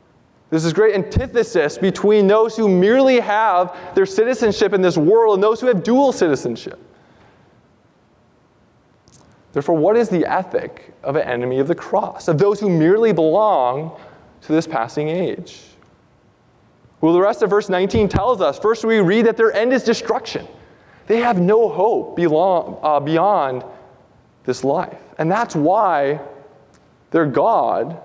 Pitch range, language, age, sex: 155-210 Hz, English, 20-39, male